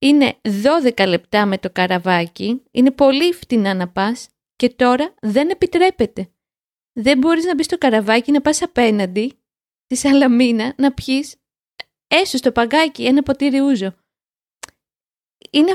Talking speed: 135 wpm